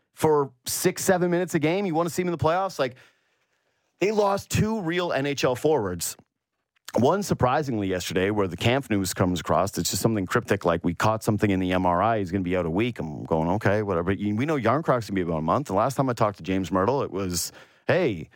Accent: American